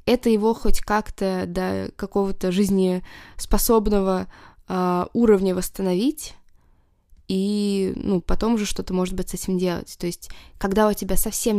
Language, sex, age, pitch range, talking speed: Russian, female, 20-39, 185-215 Hz, 135 wpm